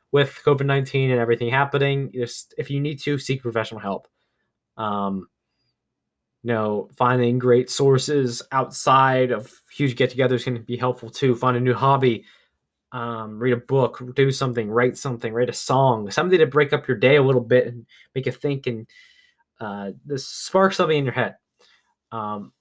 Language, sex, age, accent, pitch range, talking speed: English, male, 20-39, American, 120-145 Hz, 175 wpm